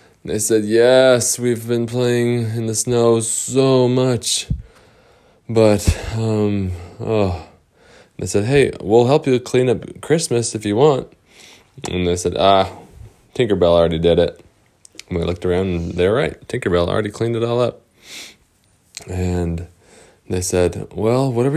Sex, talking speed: male, 150 wpm